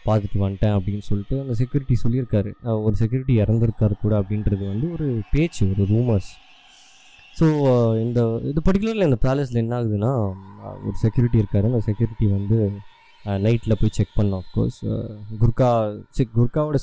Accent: native